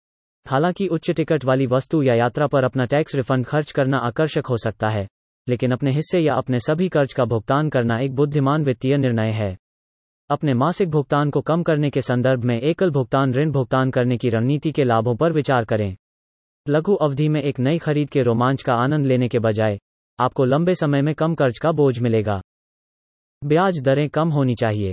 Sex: male